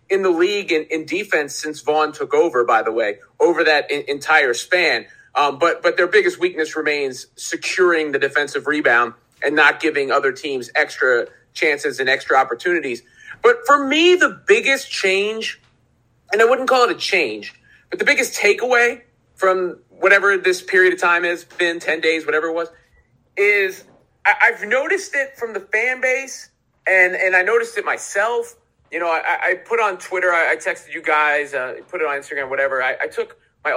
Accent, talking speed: American, 180 wpm